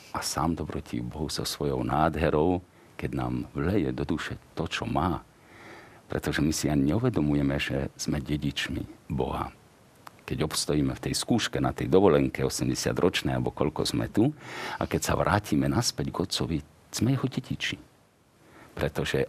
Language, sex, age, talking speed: Slovak, male, 50-69, 150 wpm